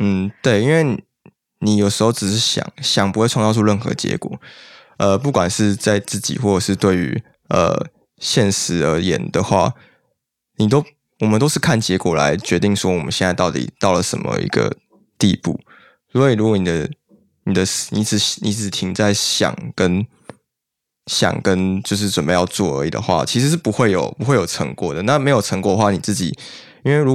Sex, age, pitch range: male, 20-39, 95-115 Hz